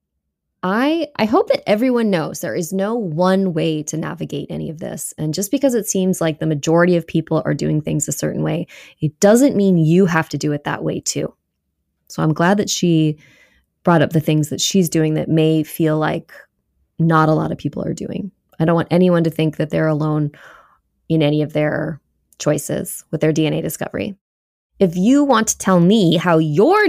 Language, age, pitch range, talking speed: English, 20-39, 155-240 Hz, 205 wpm